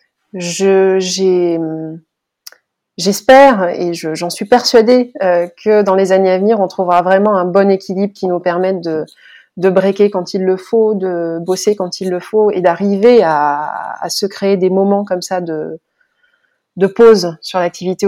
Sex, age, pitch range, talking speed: female, 30-49, 180-205 Hz, 170 wpm